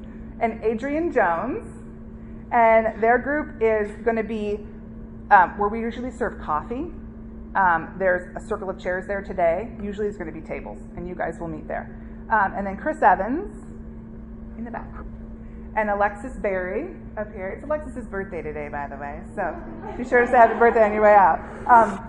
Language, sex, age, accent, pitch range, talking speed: English, female, 30-49, American, 185-230 Hz, 185 wpm